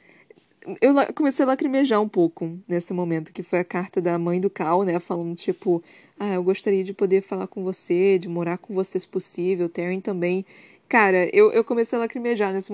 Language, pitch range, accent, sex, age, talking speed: Portuguese, 190-285 Hz, Brazilian, female, 20-39, 200 wpm